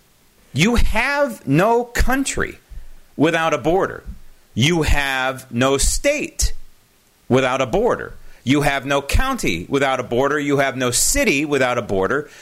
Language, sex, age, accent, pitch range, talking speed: English, male, 40-59, American, 125-180 Hz, 135 wpm